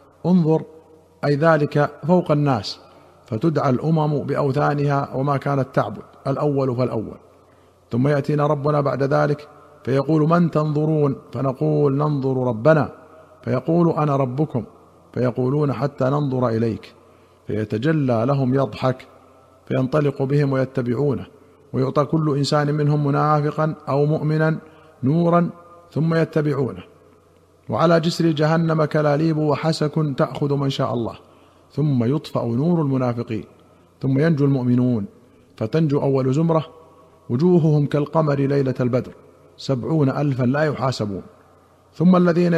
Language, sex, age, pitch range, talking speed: Arabic, male, 50-69, 125-155 Hz, 105 wpm